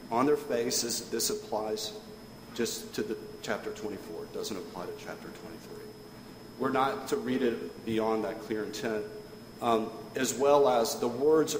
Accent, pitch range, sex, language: American, 120-160 Hz, male, English